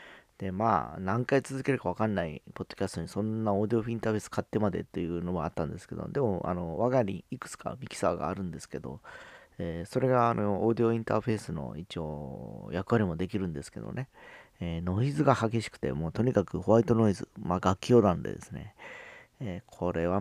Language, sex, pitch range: Japanese, male, 90-115 Hz